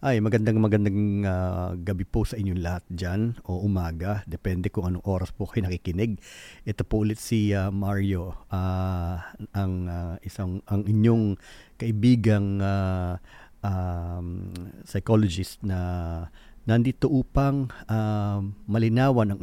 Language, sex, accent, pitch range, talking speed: Filipino, male, native, 90-115 Hz, 130 wpm